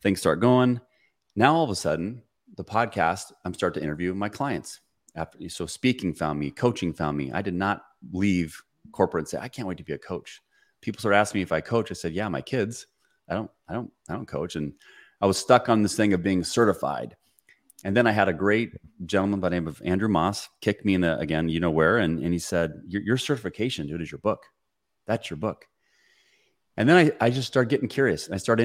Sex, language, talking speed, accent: male, English, 235 wpm, American